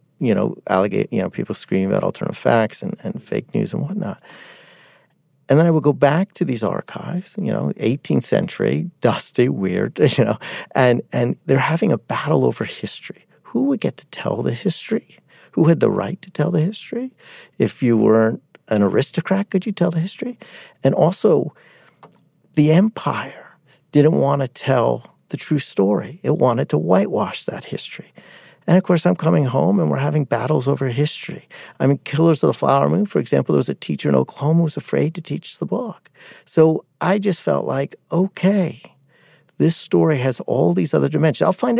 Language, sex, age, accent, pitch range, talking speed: English, male, 50-69, American, 135-175 Hz, 190 wpm